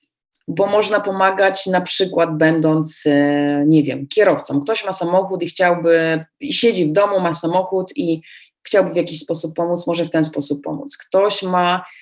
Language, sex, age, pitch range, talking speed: Polish, female, 20-39, 165-190 Hz, 160 wpm